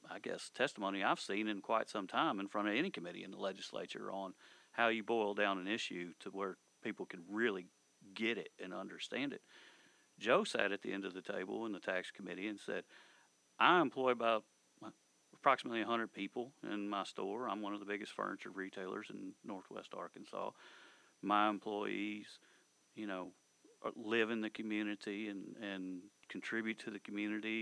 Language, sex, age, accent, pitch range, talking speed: English, male, 40-59, American, 100-110 Hz, 175 wpm